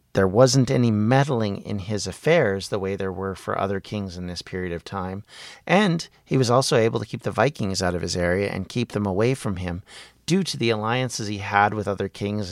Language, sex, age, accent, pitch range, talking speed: English, male, 40-59, American, 100-125 Hz, 225 wpm